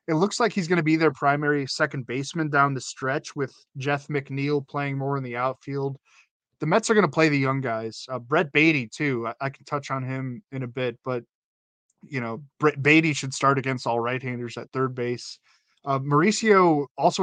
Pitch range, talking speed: 130-150 Hz, 210 wpm